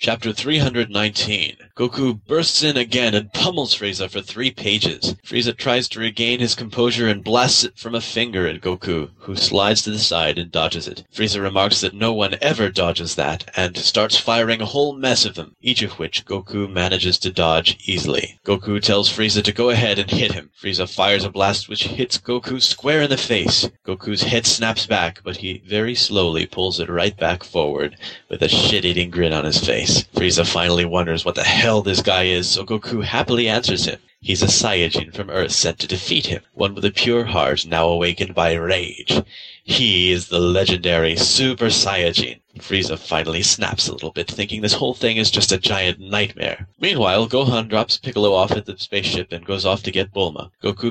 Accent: American